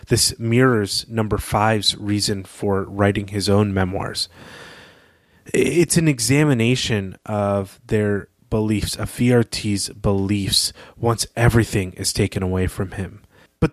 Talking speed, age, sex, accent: 120 wpm, 30-49, male, American